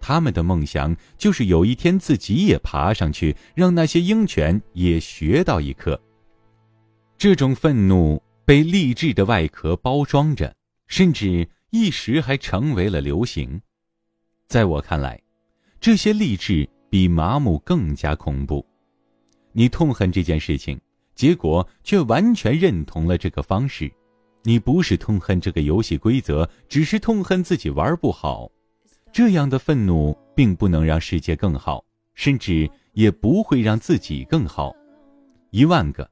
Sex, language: male, Chinese